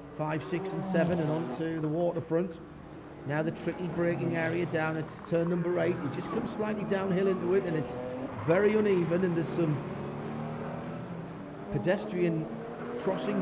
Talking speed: 155 wpm